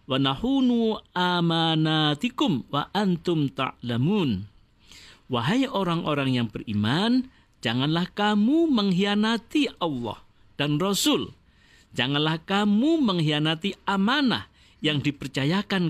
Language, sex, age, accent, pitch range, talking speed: Indonesian, male, 50-69, native, 120-195 Hz, 80 wpm